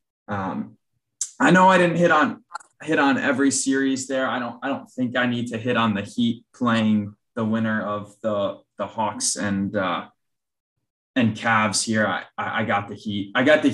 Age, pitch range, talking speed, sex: 20-39, 110-130 Hz, 190 wpm, male